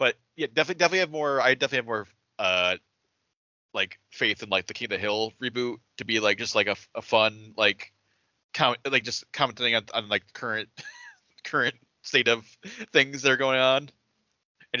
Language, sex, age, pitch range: English, male, 30-49, 110-140 Hz